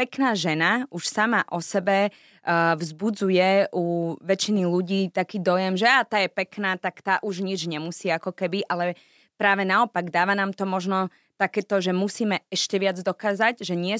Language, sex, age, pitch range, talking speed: Slovak, female, 20-39, 170-200 Hz, 170 wpm